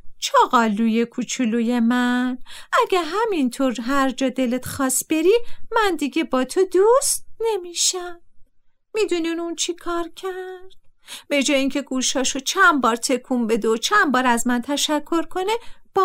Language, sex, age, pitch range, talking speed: Persian, female, 50-69, 265-385 Hz, 140 wpm